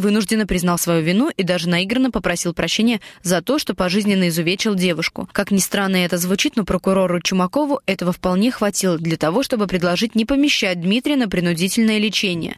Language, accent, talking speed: Russian, native, 170 wpm